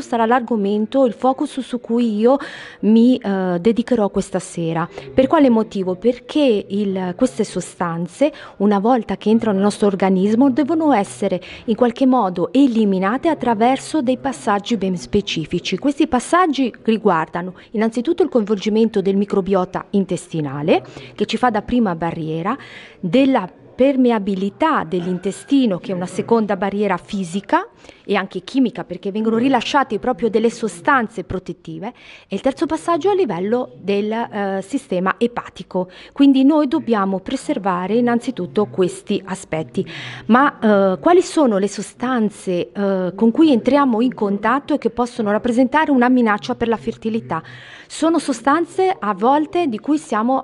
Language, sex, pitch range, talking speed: Italian, female, 195-260 Hz, 130 wpm